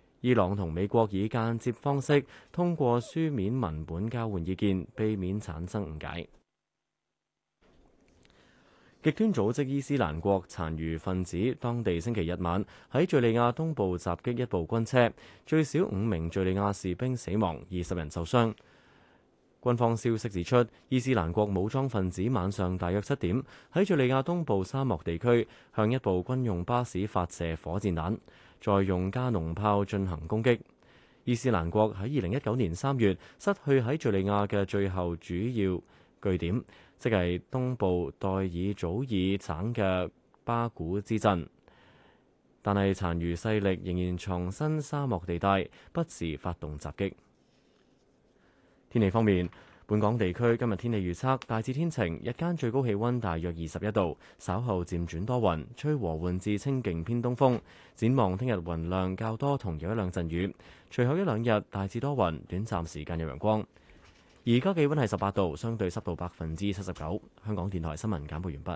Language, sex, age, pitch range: Chinese, male, 20-39, 90-120 Hz